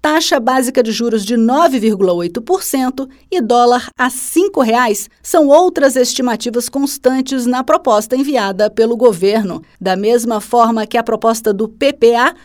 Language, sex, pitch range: Portuguese, female, 220-285 Hz